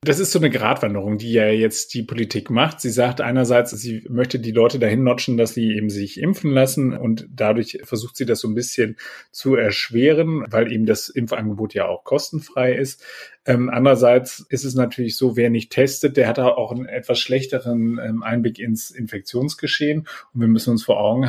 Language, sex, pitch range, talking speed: German, male, 115-130 Hz, 195 wpm